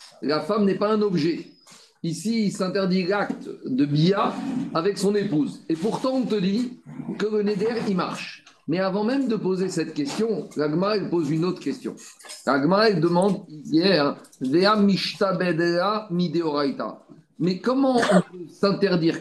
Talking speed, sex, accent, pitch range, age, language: 150 wpm, male, French, 165-215 Hz, 50-69, French